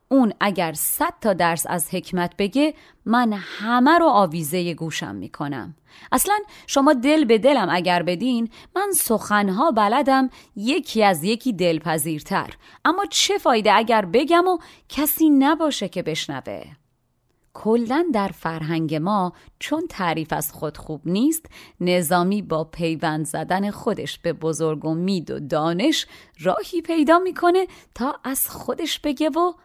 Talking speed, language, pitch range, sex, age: 140 wpm, Persian, 165-240 Hz, female, 30-49